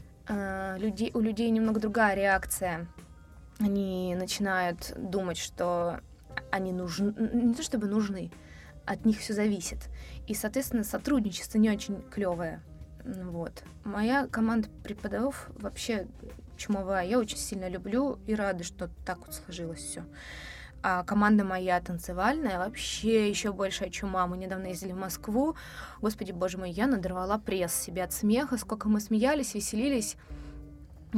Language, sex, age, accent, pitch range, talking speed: Russian, female, 20-39, native, 180-225 Hz, 135 wpm